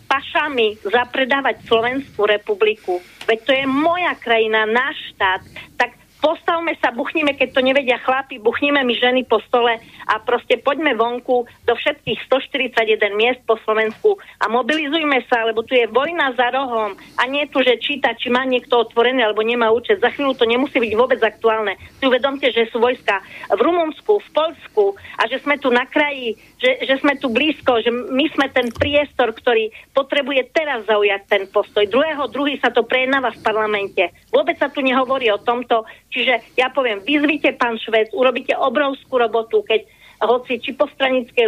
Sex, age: female, 40-59